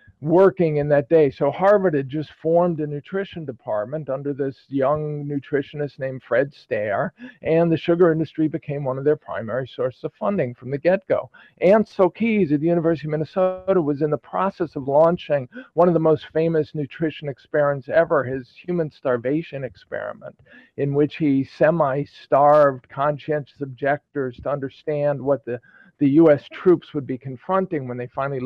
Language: English